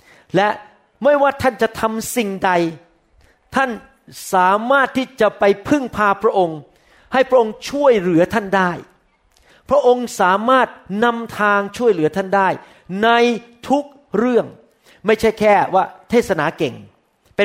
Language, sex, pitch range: Thai, male, 180-240 Hz